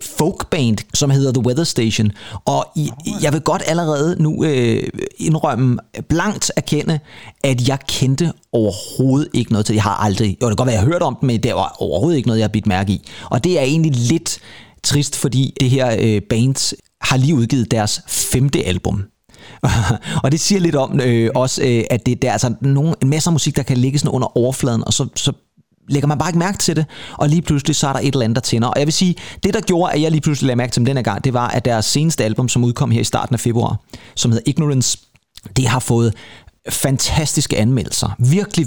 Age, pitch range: 30-49, 115-150 Hz